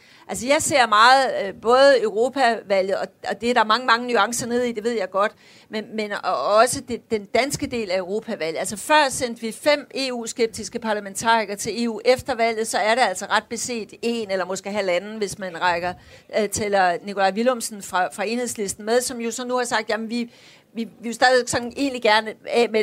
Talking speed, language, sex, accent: 195 wpm, Danish, female, native